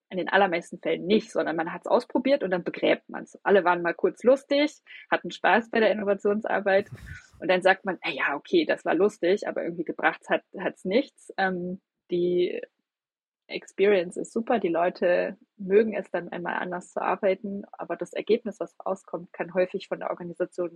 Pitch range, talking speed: 175-210 Hz, 185 wpm